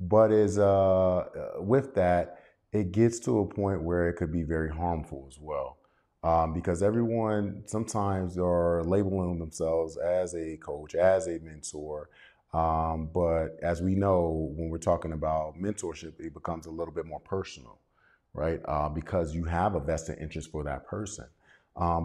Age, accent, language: 30-49, American, English